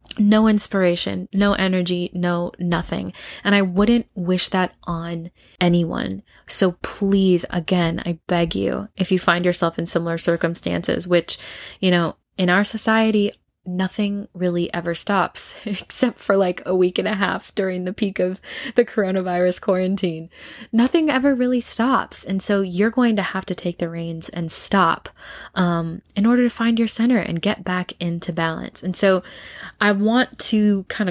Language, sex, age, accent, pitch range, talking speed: English, female, 20-39, American, 175-205 Hz, 165 wpm